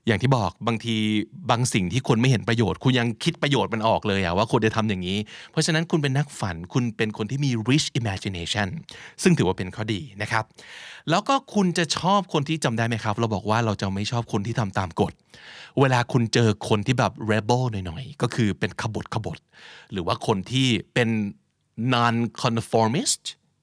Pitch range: 105-140 Hz